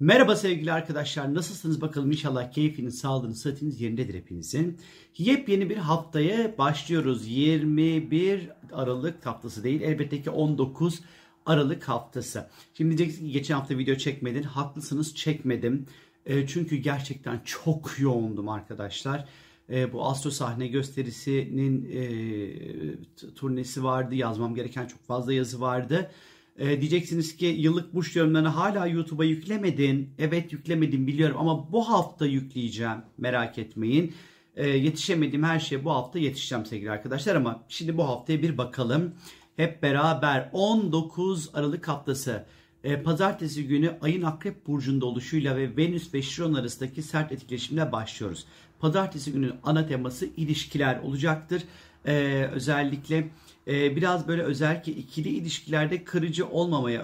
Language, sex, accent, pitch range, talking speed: Turkish, male, native, 130-160 Hz, 125 wpm